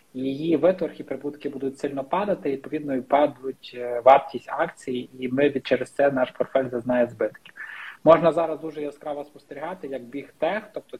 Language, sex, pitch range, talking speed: Ukrainian, male, 130-145 Hz, 160 wpm